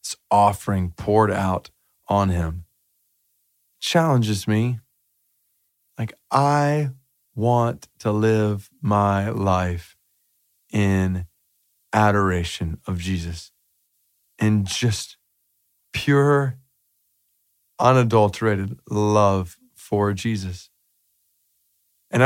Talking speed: 75 wpm